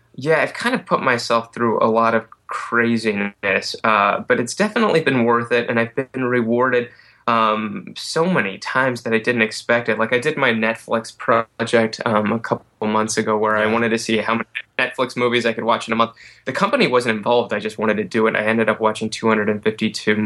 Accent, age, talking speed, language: American, 20-39, 215 wpm, English